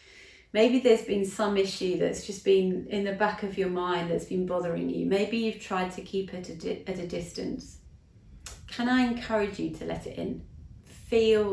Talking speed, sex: 185 wpm, female